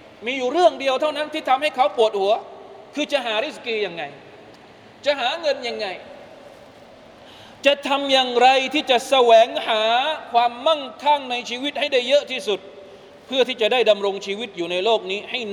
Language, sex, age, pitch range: Thai, male, 20-39, 195-280 Hz